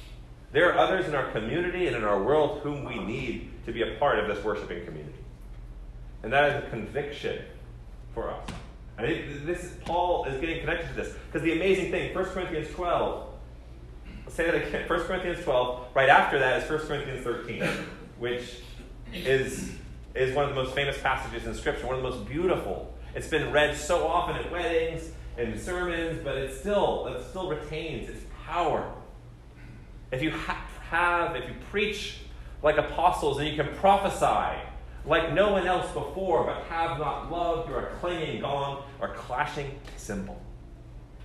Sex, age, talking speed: male, 30-49, 170 wpm